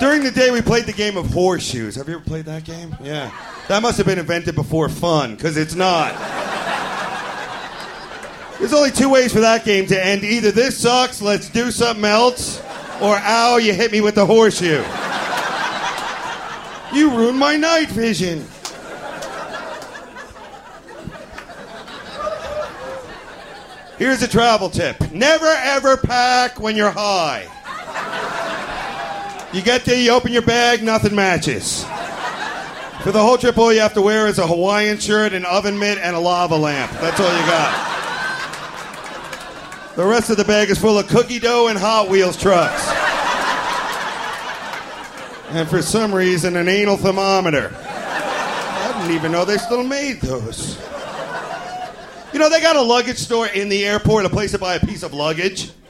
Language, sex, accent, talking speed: English, male, American, 155 wpm